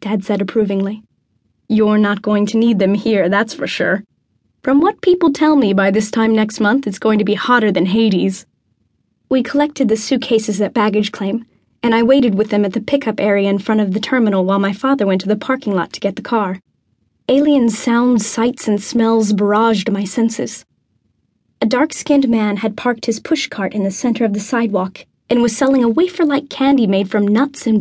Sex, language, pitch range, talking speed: female, English, 210-255 Hz, 205 wpm